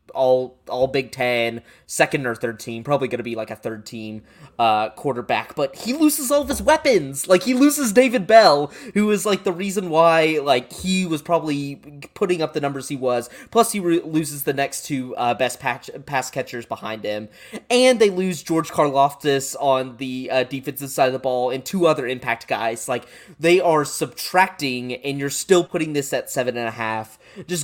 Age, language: 20-39, English